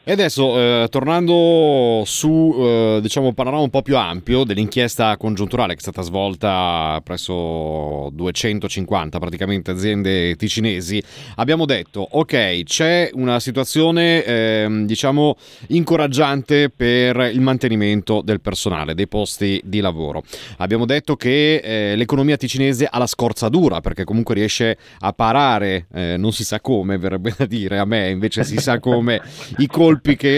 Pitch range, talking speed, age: 100-130 Hz, 145 wpm, 30-49